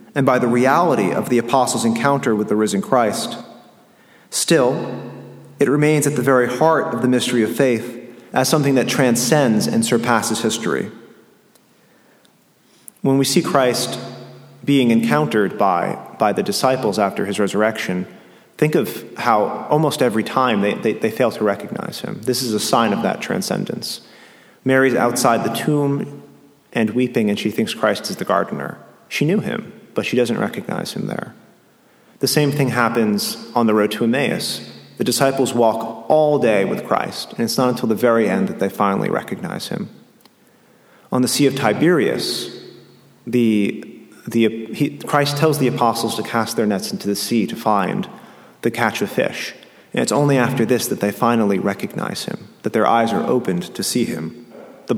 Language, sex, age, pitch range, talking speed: English, male, 40-59, 115-135 Hz, 170 wpm